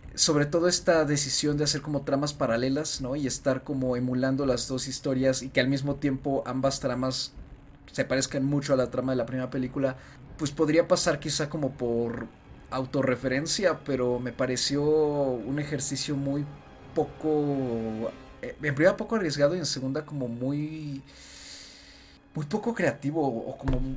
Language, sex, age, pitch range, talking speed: Spanish, male, 30-49, 125-145 Hz, 155 wpm